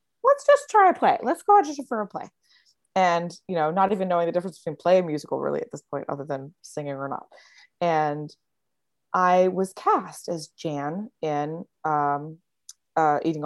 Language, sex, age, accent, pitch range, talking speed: English, female, 20-39, American, 160-215 Hz, 190 wpm